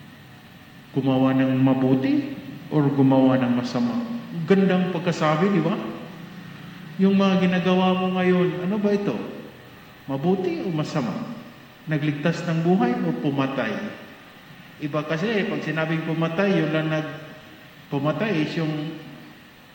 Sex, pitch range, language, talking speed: male, 140-180 Hz, Filipino, 110 wpm